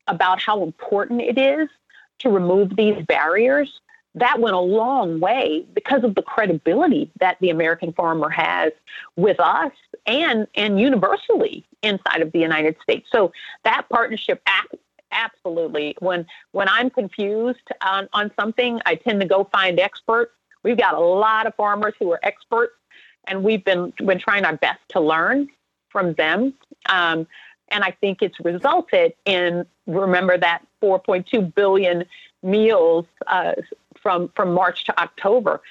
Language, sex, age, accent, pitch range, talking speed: English, female, 40-59, American, 175-245 Hz, 145 wpm